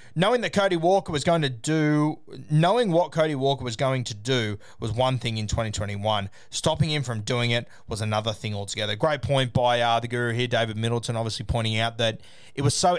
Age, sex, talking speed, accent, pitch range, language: 20-39, male, 215 wpm, Australian, 110-140 Hz, English